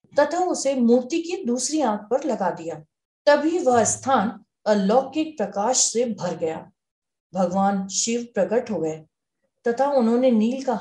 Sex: female